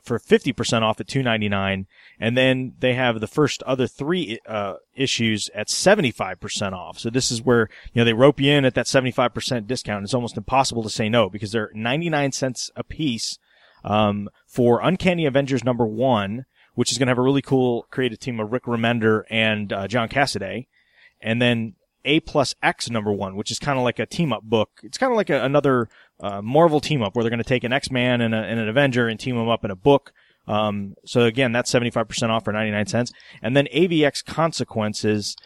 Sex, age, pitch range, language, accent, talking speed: male, 30-49, 110-130 Hz, English, American, 215 wpm